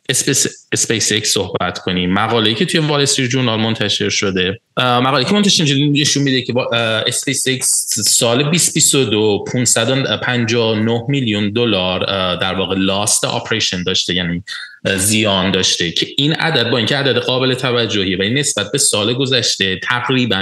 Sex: male